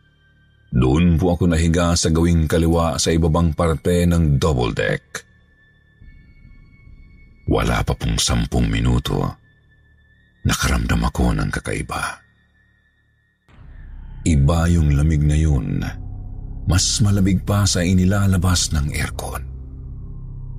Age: 50-69